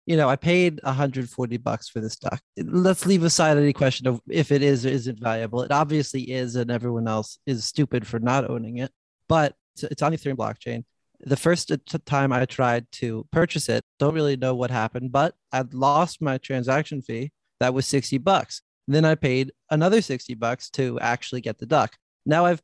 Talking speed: 195 wpm